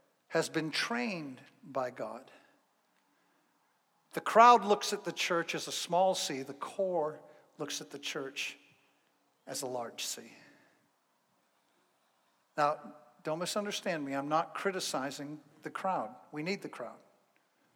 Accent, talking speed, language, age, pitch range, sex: American, 130 wpm, English, 60-79, 145-185 Hz, male